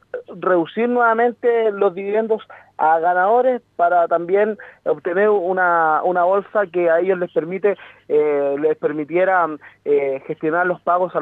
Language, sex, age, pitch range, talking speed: Spanish, male, 30-49, 180-215 Hz, 135 wpm